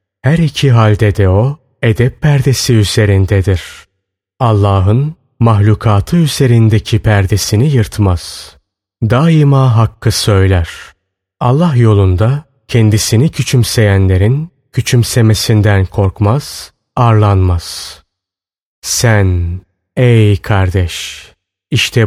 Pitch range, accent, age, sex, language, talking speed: 100-130 Hz, native, 30-49, male, Turkish, 75 wpm